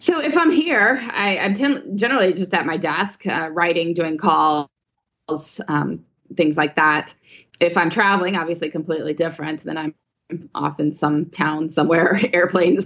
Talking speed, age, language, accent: 155 wpm, 20-39, English, American